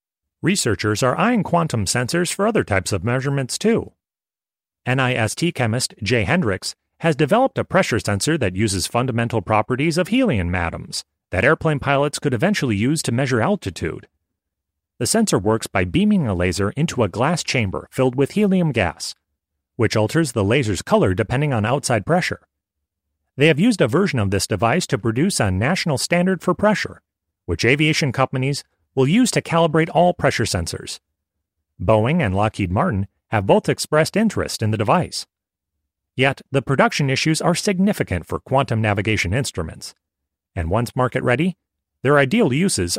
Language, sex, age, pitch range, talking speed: English, male, 30-49, 95-160 Hz, 155 wpm